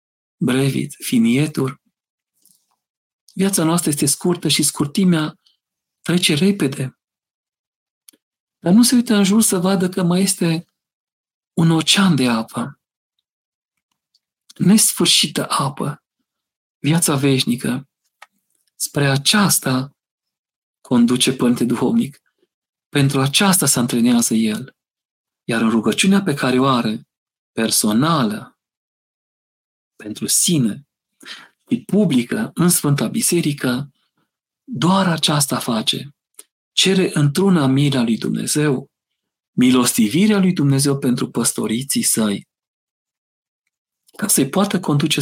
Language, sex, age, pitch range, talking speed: Romanian, male, 40-59, 130-190 Hz, 95 wpm